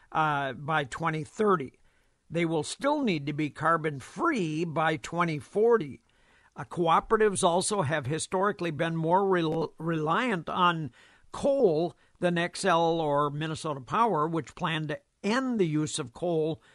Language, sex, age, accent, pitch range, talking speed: English, male, 60-79, American, 155-190 Hz, 135 wpm